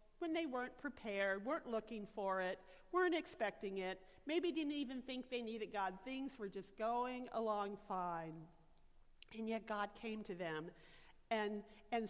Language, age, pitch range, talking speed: English, 50-69, 200-260 Hz, 160 wpm